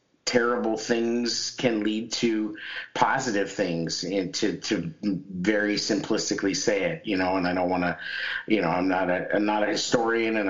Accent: American